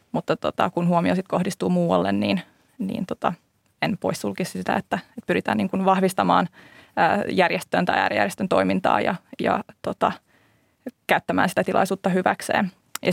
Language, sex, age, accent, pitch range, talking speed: Finnish, female, 20-39, native, 175-190 Hz, 140 wpm